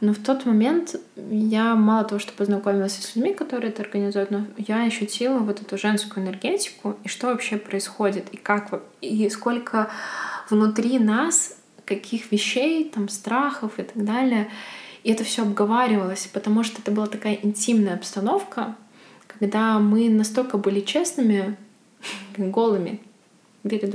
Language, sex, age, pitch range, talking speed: Russian, female, 20-39, 200-230 Hz, 140 wpm